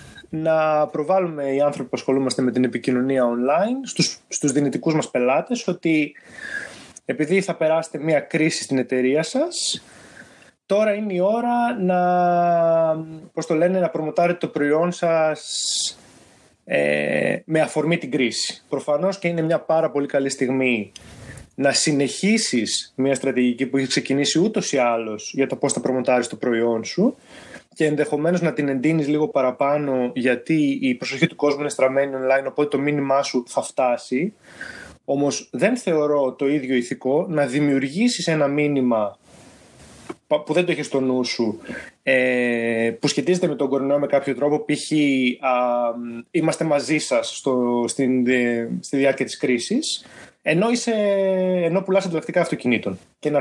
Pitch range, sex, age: 125-160 Hz, male, 20-39